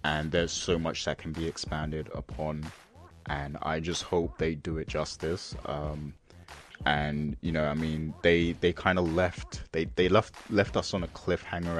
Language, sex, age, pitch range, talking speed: English, male, 20-39, 75-85 Hz, 185 wpm